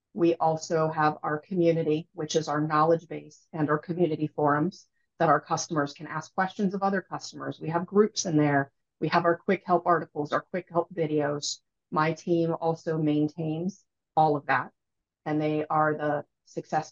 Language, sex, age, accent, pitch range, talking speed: English, female, 30-49, American, 150-175 Hz, 175 wpm